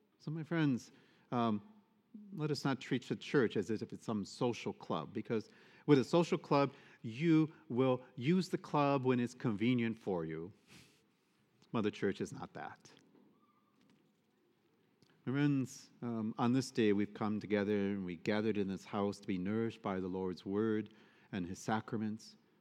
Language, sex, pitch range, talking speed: English, male, 115-170 Hz, 160 wpm